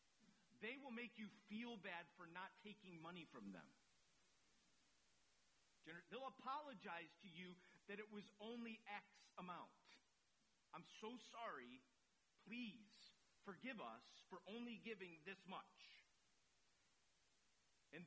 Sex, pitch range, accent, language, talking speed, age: male, 180-225 Hz, American, English, 115 wpm, 40-59